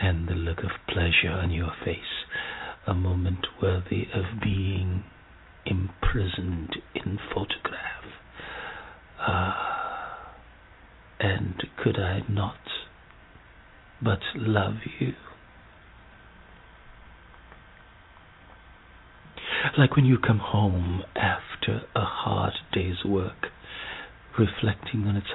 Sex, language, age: male, English, 60-79